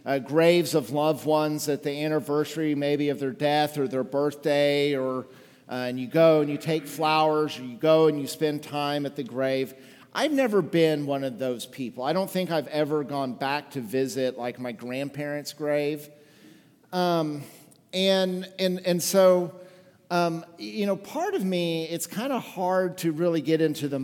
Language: English